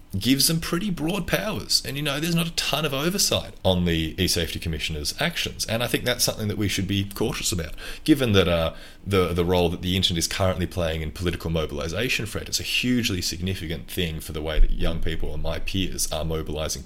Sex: male